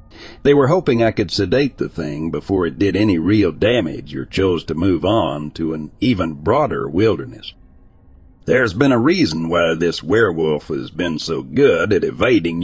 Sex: male